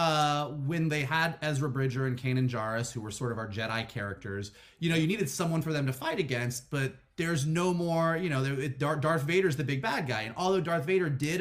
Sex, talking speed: male, 225 wpm